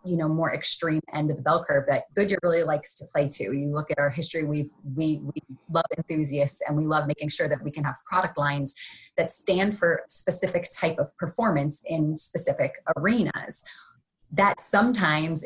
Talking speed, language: 185 wpm, English